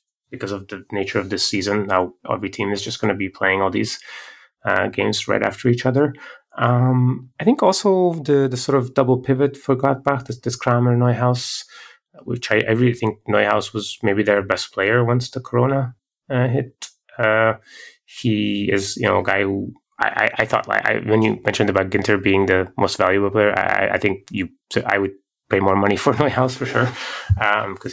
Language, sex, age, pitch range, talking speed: English, male, 20-39, 100-125 Hz, 205 wpm